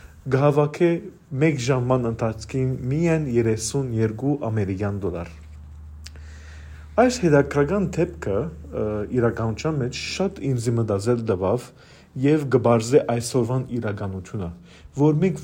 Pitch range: 95-155 Hz